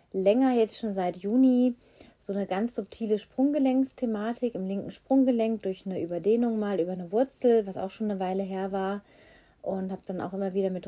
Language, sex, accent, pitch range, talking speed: German, female, German, 190-225 Hz, 190 wpm